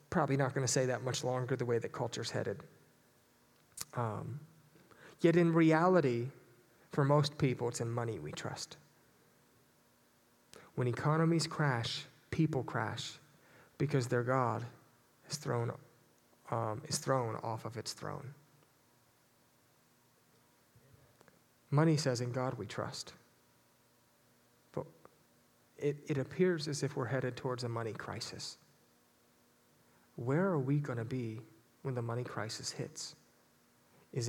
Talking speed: 125 wpm